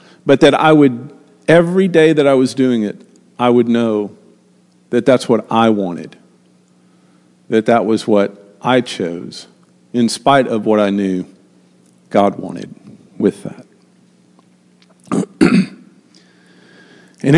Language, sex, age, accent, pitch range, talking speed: English, male, 50-69, American, 90-140 Hz, 125 wpm